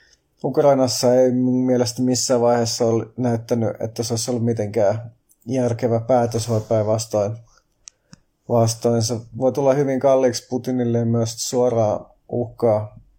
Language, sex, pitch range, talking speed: Finnish, male, 115-130 Hz, 115 wpm